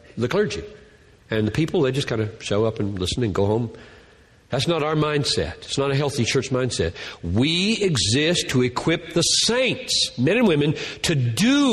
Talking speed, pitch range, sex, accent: 190 wpm, 150-230 Hz, male, American